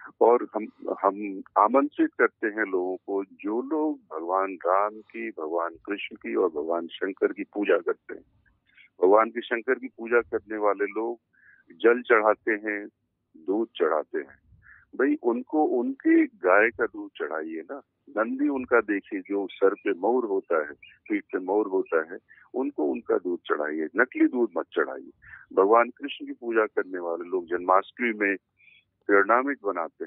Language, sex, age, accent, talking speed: Hindi, male, 50-69, native, 155 wpm